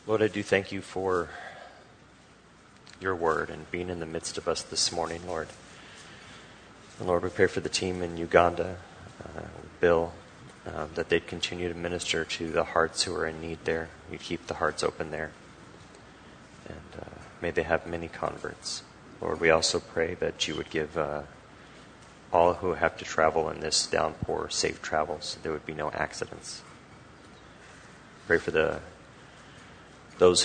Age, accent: 30-49, American